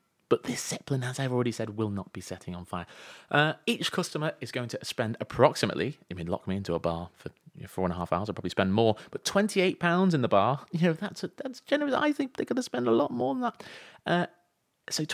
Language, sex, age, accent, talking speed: English, male, 30-49, British, 245 wpm